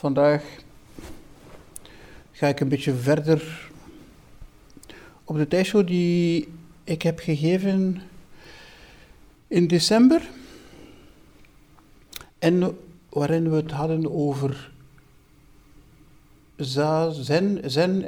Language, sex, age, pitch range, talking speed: Dutch, male, 60-79, 140-175 Hz, 75 wpm